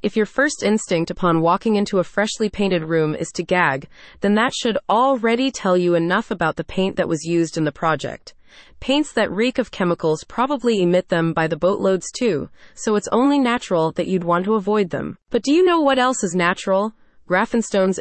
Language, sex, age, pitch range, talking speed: English, female, 20-39, 170-230 Hz, 205 wpm